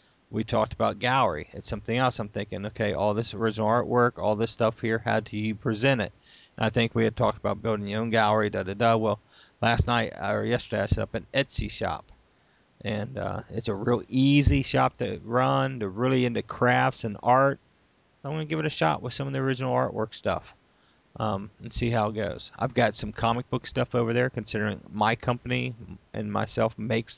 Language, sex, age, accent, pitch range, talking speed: English, male, 40-59, American, 105-120 Hz, 210 wpm